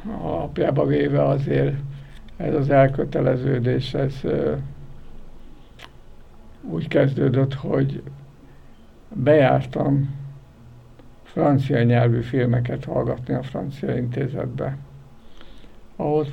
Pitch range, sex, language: 120-140 Hz, male, Hungarian